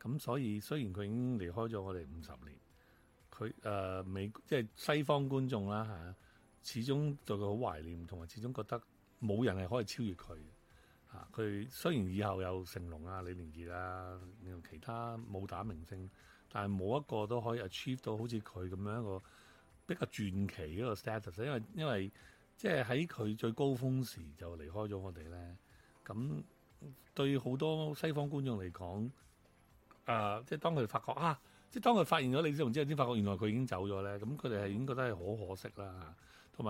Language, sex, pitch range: English, male, 95-125 Hz